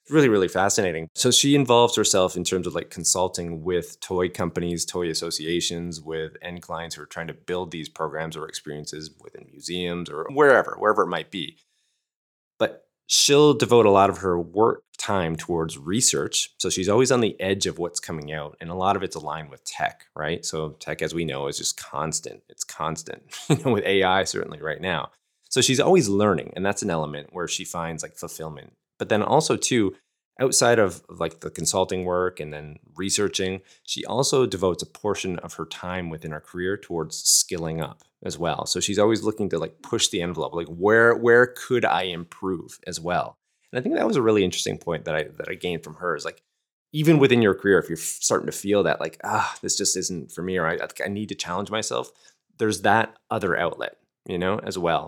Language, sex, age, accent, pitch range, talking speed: English, male, 30-49, American, 80-100 Hz, 210 wpm